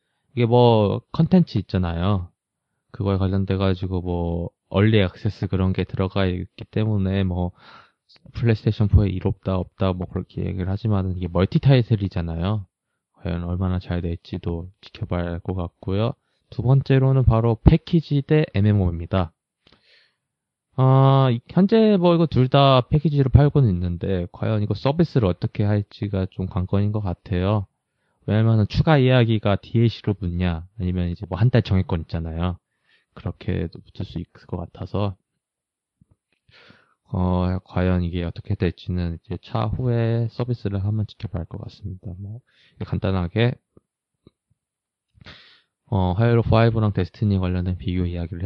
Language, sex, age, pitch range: Korean, male, 20-39, 90-115 Hz